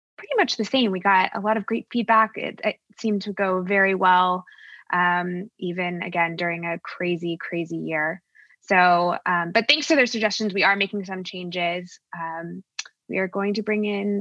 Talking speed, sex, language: 190 wpm, female, English